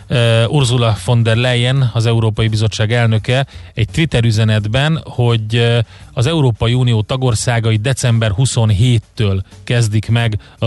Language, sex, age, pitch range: Hungarian, male, 30-49, 105-125 Hz